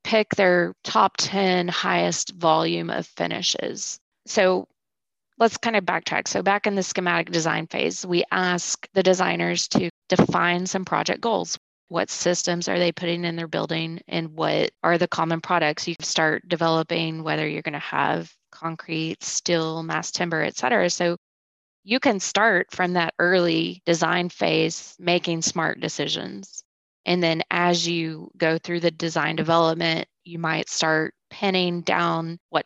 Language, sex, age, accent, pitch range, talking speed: English, female, 20-39, American, 165-180 Hz, 155 wpm